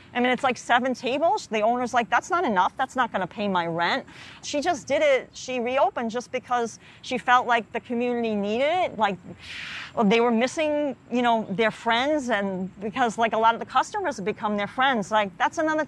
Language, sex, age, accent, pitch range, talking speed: English, female, 40-59, American, 215-275 Hz, 215 wpm